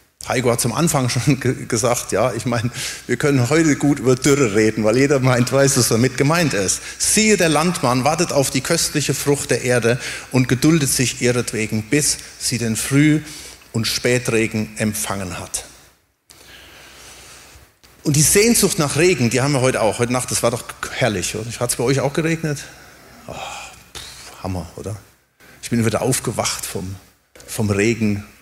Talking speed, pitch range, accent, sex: 170 wpm, 115-150 Hz, German, male